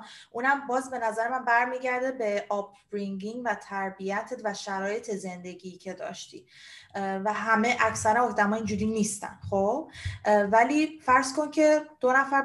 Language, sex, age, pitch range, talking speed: Persian, female, 20-39, 195-235 Hz, 135 wpm